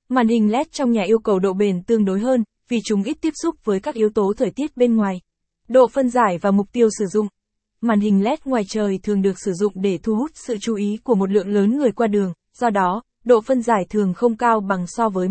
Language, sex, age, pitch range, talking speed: Vietnamese, female, 20-39, 200-245 Hz, 260 wpm